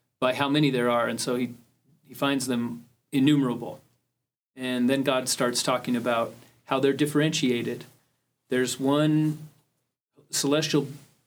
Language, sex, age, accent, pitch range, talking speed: English, male, 30-49, American, 125-150 Hz, 130 wpm